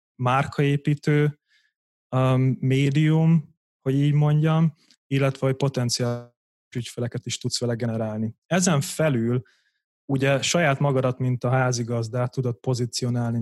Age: 30-49